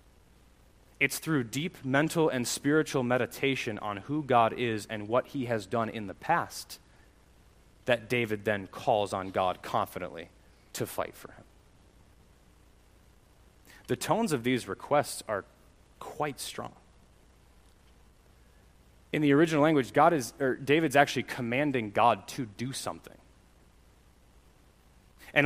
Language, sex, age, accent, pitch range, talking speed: English, male, 20-39, American, 110-145 Hz, 125 wpm